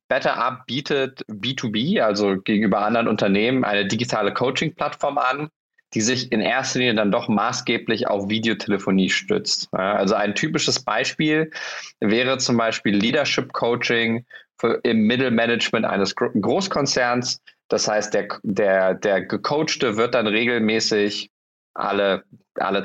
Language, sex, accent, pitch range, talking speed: German, male, German, 100-125 Hz, 120 wpm